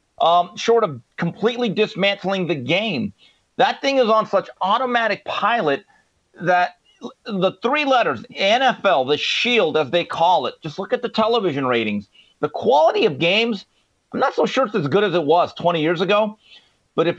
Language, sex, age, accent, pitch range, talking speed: English, male, 40-59, American, 170-225 Hz, 175 wpm